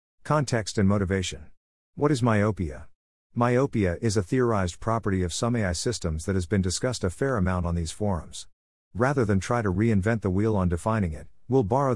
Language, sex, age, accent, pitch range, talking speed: English, male, 50-69, American, 90-115 Hz, 185 wpm